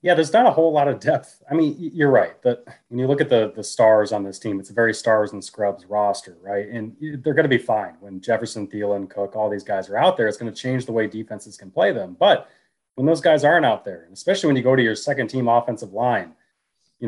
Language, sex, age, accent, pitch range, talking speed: English, male, 30-49, American, 110-135 Hz, 260 wpm